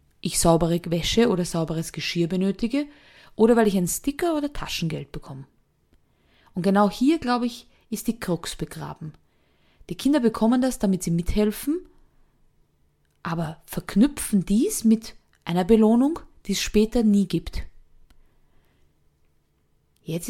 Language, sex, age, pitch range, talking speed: German, female, 20-39, 175-230 Hz, 125 wpm